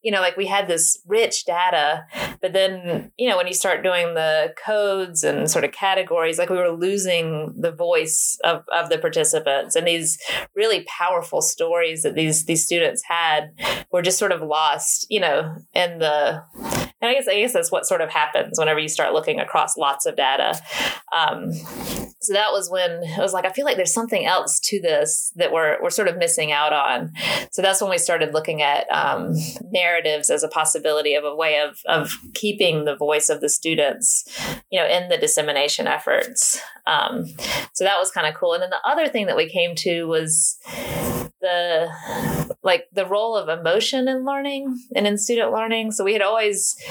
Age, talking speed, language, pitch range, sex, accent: 30-49, 200 wpm, English, 165-260 Hz, female, American